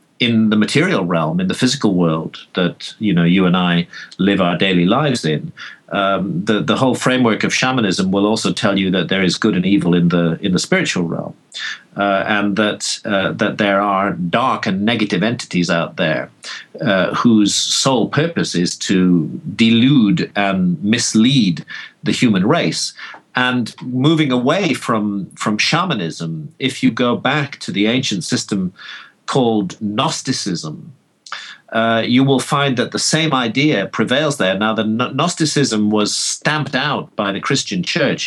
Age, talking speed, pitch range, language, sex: 50-69, 160 wpm, 90-125 Hz, English, male